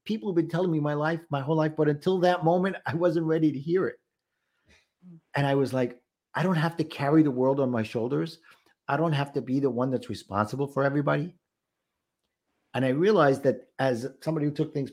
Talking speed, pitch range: 215 wpm, 125-160 Hz